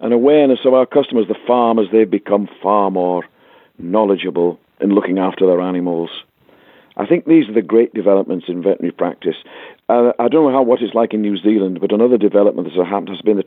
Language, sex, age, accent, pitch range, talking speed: English, male, 50-69, British, 95-120 Hz, 200 wpm